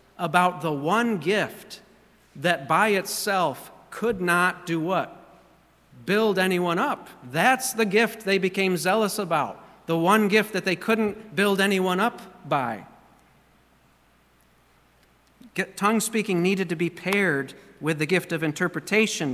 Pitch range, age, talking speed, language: 160-190 Hz, 40-59, 130 wpm, English